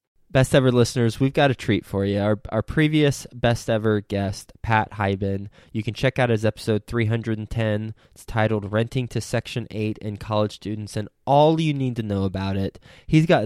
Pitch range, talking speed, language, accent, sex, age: 105-125 Hz, 190 wpm, English, American, male, 20-39